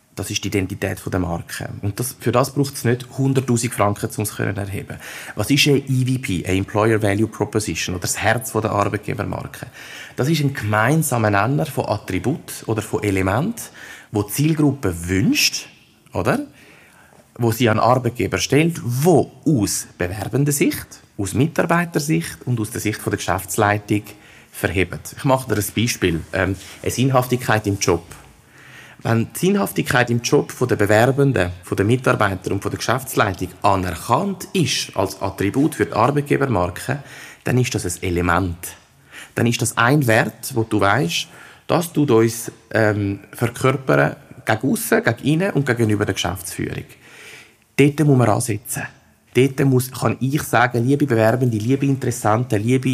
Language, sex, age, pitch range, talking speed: German, male, 30-49, 105-135 Hz, 155 wpm